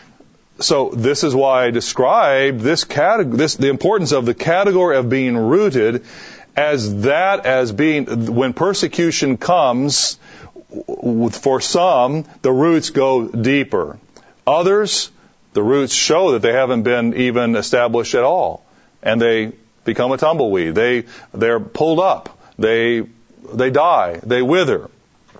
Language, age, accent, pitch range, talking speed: English, 40-59, American, 120-145 Hz, 130 wpm